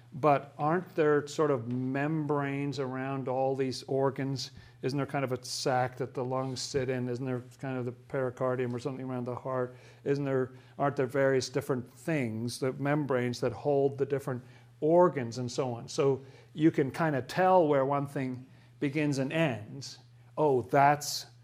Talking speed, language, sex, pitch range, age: 175 wpm, English, male, 125-145 Hz, 50-69